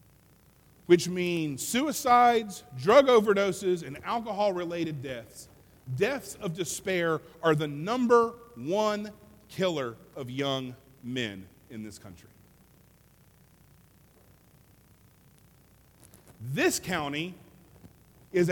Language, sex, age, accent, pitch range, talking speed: English, male, 40-59, American, 130-205 Hz, 80 wpm